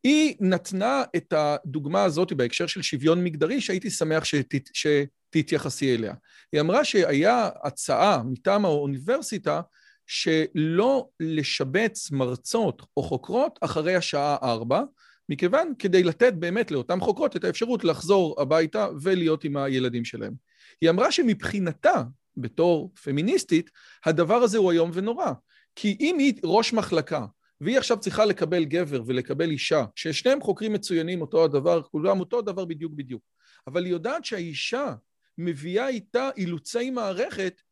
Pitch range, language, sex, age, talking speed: 155-220 Hz, Hebrew, male, 40-59, 130 wpm